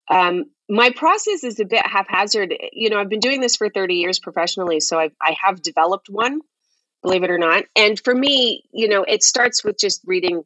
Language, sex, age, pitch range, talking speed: English, female, 30-49, 155-220 Hz, 205 wpm